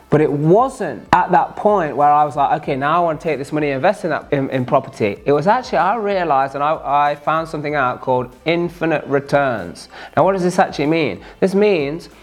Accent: British